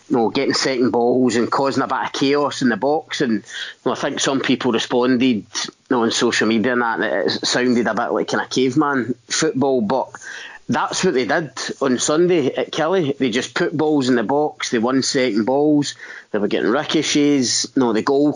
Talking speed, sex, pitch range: 220 wpm, male, 115-135 Hz